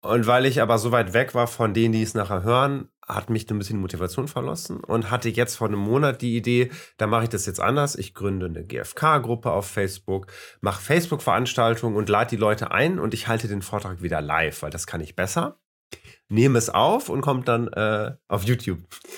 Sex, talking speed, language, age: male, 215 wpm, German, 30-49